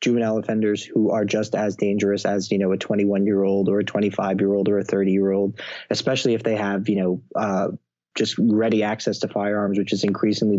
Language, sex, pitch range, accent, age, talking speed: English, male, 95-110 Hz, American, 20-39, 220 wpm